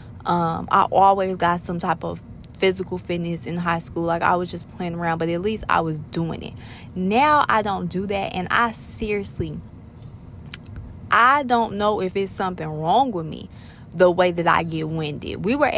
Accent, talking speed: American, 190 wpm